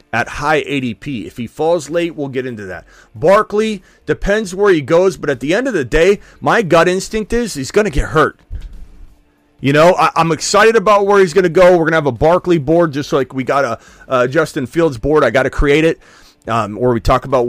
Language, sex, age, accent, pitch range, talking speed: English, male, 30-49, American, 130-175 Hz, 235 wpm